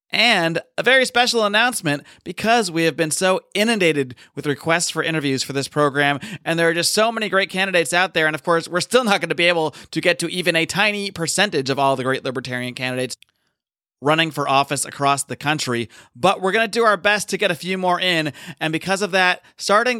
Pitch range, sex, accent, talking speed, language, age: 145-190 Hz, male, American, 225 wpm, English, 30-49